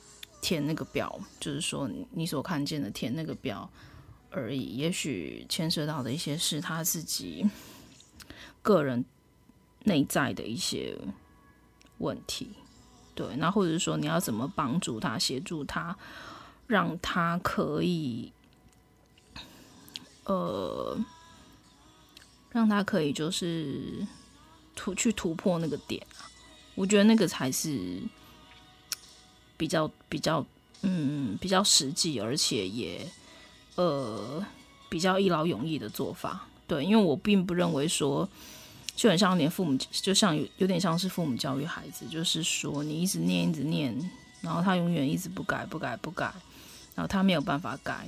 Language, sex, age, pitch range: Chinese, female, 20-39, 155-195 Hz